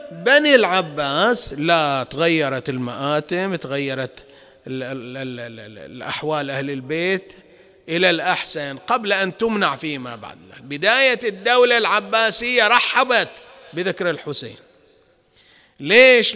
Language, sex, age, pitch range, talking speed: English, male, 30-49, 185-250 Hz, 85 wpm